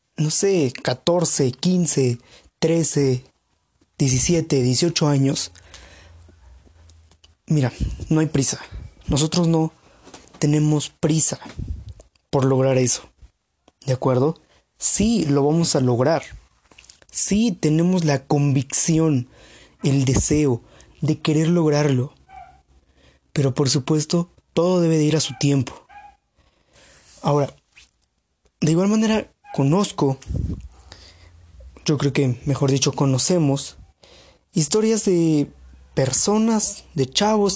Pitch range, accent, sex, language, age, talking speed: 130-170 Hz, Mexican, male, Spanish, 20-39, 95 wpm